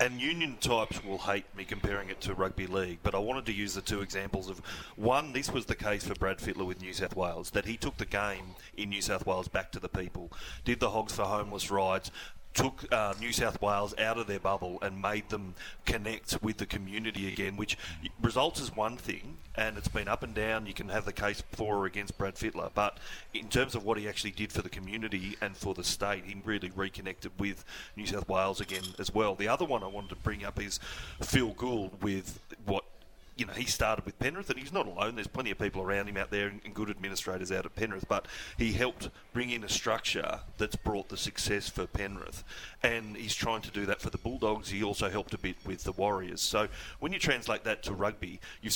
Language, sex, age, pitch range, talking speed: English, male, 30-49, 95-110 Hz, 235 wpm